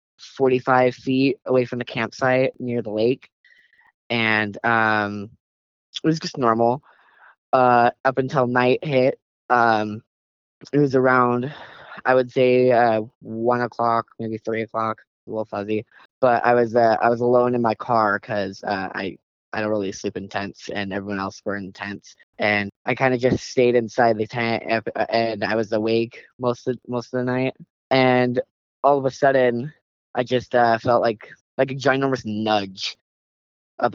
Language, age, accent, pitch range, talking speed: English, 20-39, American, 110-125 Hz, 170 wpm